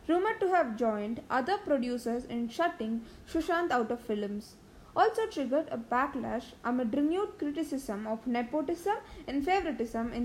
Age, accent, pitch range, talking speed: 20-39, Indian, 240-325 Hz, 140 wpm